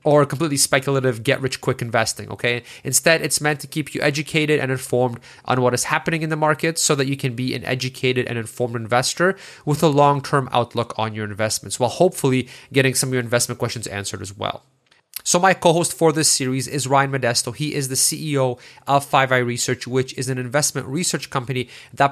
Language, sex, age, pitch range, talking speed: English, male, 30-49, 120-145 Hz, 200 wpm